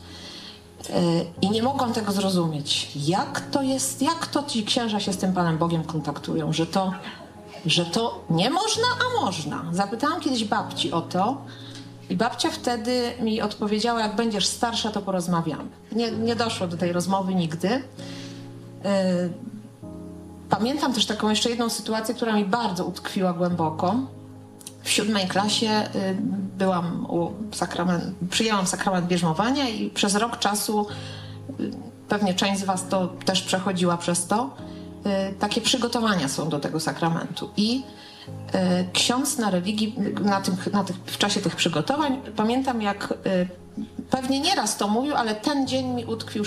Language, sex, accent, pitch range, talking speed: Polish, female, native, 180-235 Hz, 140 wpm